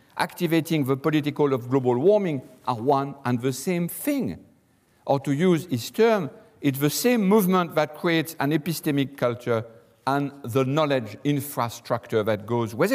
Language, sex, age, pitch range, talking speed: English, male, 50-69, 130-180 Hz, 155 wpm